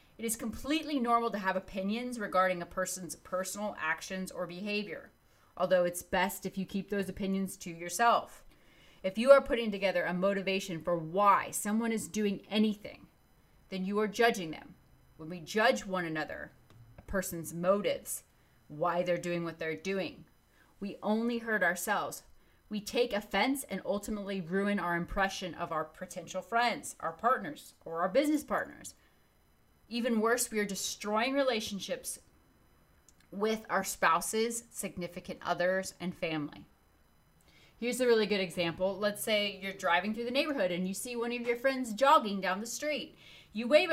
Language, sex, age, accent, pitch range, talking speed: English, female, 30-49, American, 185-235 Hz, 160 wpm